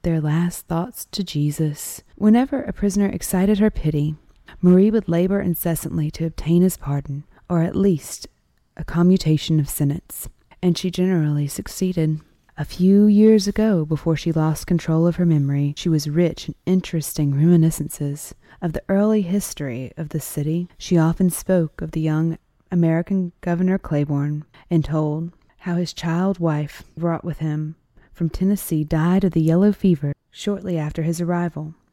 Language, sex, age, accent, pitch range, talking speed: English, female, 30-49, American, 155-185 Hz, 155 wpm